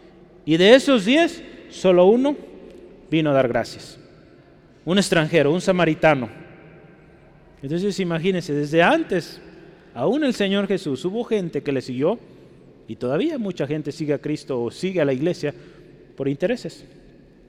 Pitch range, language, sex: 120-155 Hz, Spanish, male